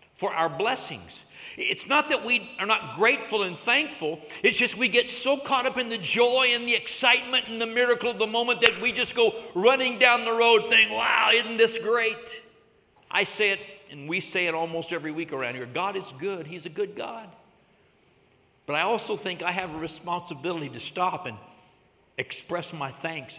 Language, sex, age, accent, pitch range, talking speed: English, male, 60-79, American, 165-230 Hz, 200 wpm